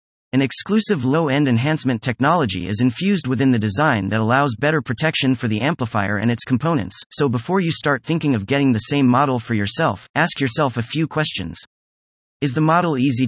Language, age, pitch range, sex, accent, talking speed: English, 30-49, 110-155 Hz, male, American, 185 wpm